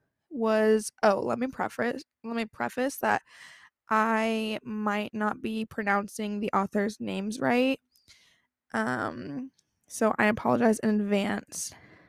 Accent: American